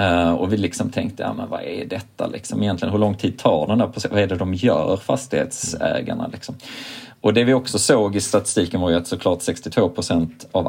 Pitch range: 85-110 Hz